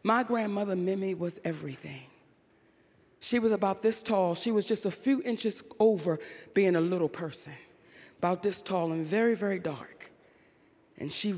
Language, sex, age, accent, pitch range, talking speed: English, female, 40-59, American, 175-260 Hz, 160 wpm